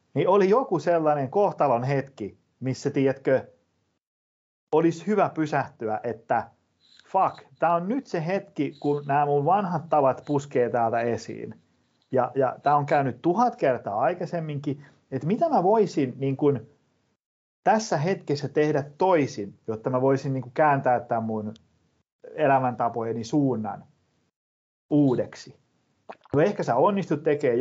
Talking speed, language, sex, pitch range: 130 wpm, Finnish, male, 125-155 Hz